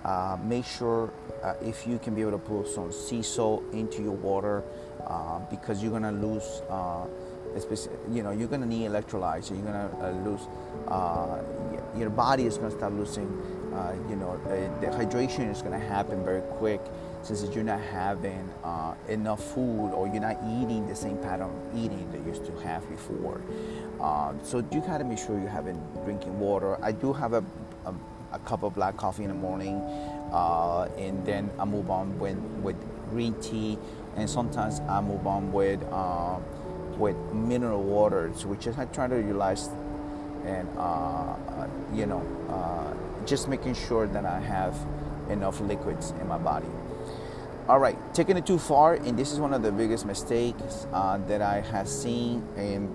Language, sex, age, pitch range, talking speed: English, male, 30-49, 95-115 Hz, 185 wpm